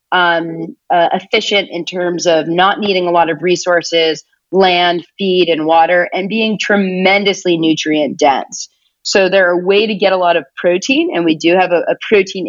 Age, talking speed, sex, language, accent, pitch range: 30-49, 185 wpm, female, English, American, 165-190 Hz